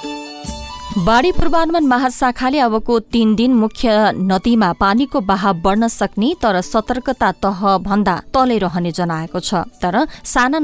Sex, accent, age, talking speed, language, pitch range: female, Indian, 20-39, 130 wpm, English, 175-225 Hz